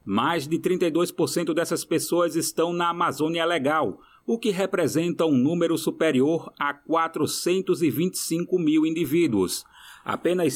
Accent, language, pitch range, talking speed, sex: Brazilian, Portuguese, 155-185 Hz, 115 wpm, male